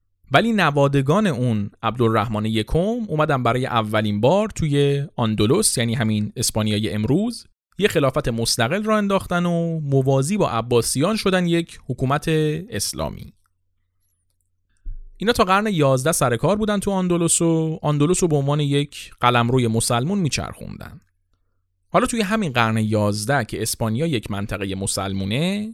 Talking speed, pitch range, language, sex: 135 wpm, 105-165 Hz, Persian, male